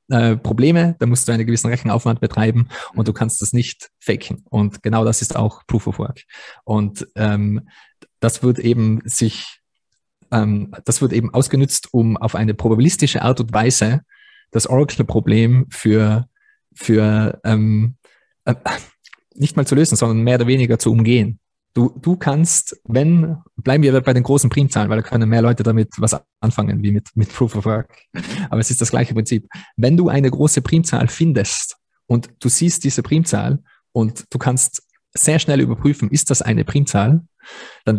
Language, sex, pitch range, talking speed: German, male, 110-140 Hz, 170 wpm